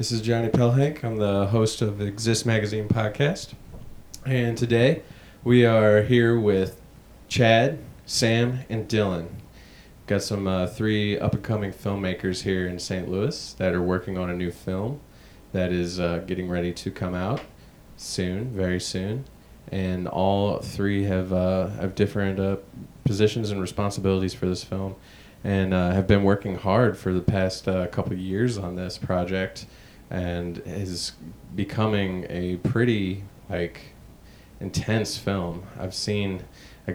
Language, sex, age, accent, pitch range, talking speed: English, male, 20-39, American, 95-110 Hz, 150 wpm